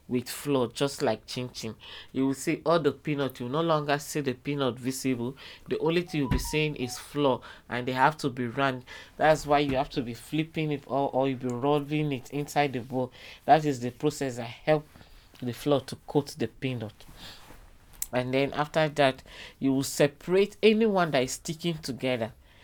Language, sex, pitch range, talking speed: English, male, 120-145 Hz, 195 wpm